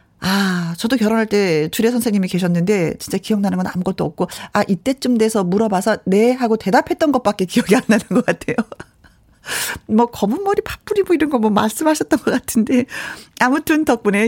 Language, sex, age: Korean, female, 40-59